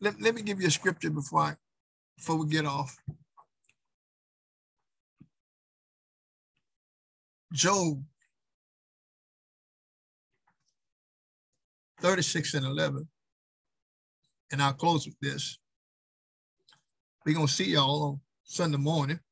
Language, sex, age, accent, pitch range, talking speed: English, male, 50-69, American, 140-160 Hz, 95 wpm